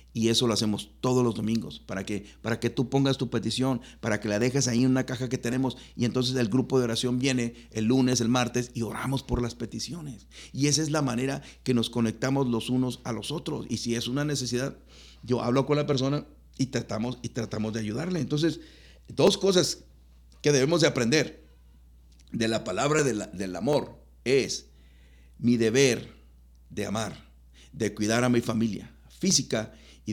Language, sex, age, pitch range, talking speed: Spanish, male, 50-69, 90-130 Hz, 190 wpm